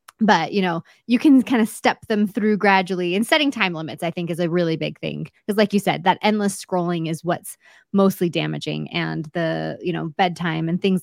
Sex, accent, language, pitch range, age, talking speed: female, American, English, 180-255 Hz, 20-39, 220 wpm